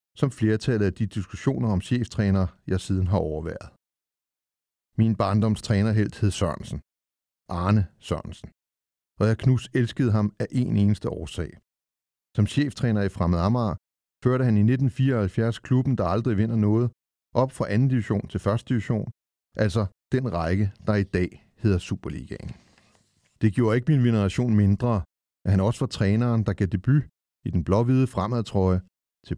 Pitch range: 90-115 Hz